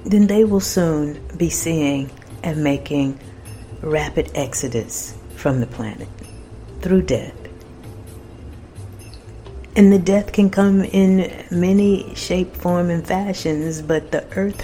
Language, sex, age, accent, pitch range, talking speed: English, female, 50-69, American, 115-175 Hz, 120 wpm